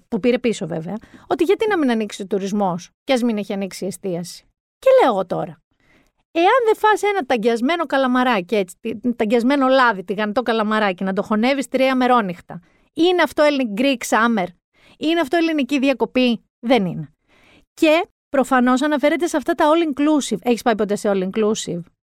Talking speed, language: 170 wpm, Greek